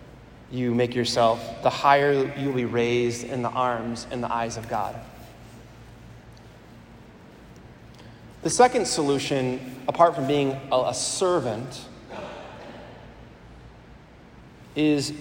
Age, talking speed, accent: 30-49, 100 wpm, American